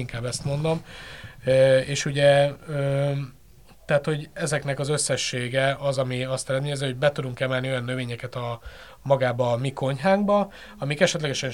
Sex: male